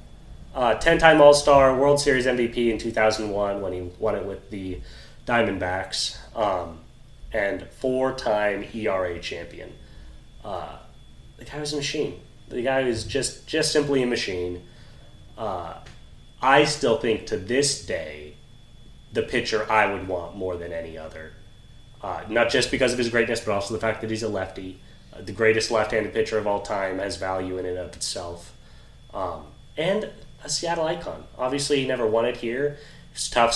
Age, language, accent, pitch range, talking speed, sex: 30-49, English, American, 95-125 Hz, 165 wpm, male